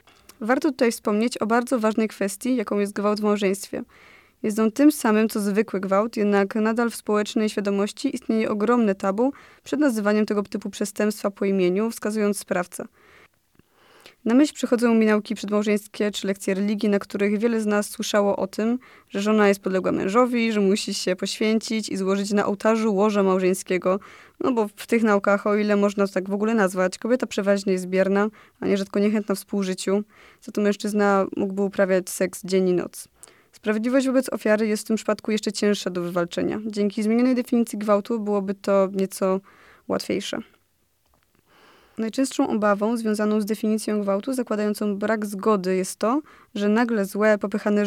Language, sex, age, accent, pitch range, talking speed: Polish, female, 20-39, native, 200-225 Hz, 165 wpm